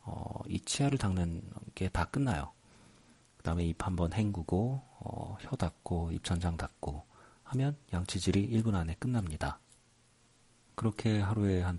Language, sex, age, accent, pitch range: Korean, male, 40-59, native, 80-110 Hz